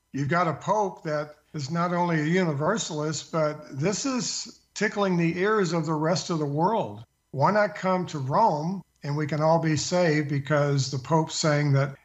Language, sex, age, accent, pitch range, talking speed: English, male, 50-69, American, 145-165 Hz, 190 wpm